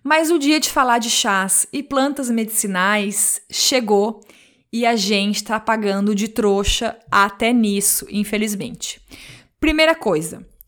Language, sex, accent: Portuguese, female, Brazilian